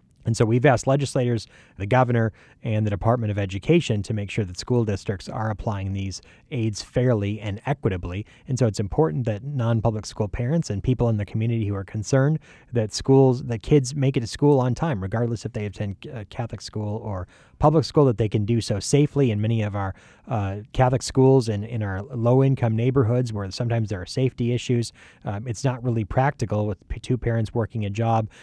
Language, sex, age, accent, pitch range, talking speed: English, male, 30-49, American, 100-125 Hz, 205 wpm